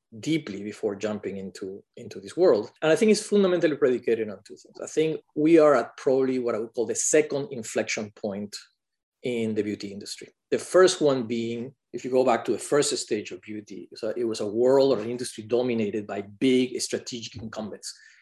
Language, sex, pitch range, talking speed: English, male, 110-145 Hz, 200 wpm